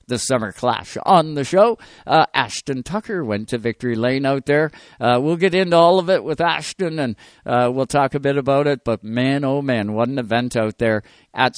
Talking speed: 220 wpm